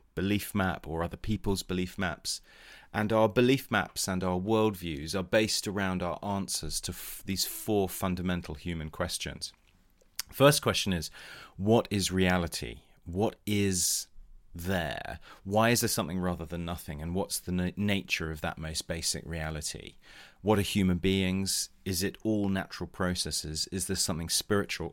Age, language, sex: 30-49, English, male